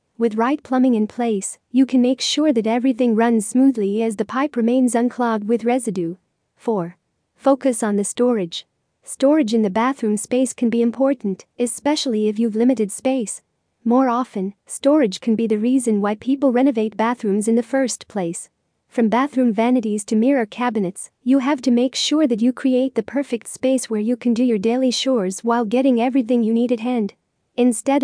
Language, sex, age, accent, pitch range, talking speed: English, female, 40-59, American, 220-260 Hz, 180 wpm